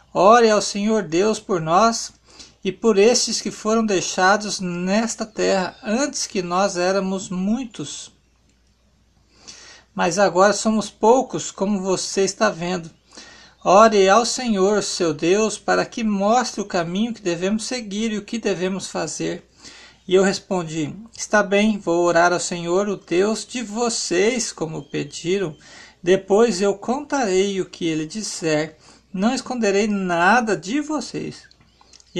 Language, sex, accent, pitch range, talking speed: Portuguese, male, Brazilian, 180-225 Hz, 135 wpm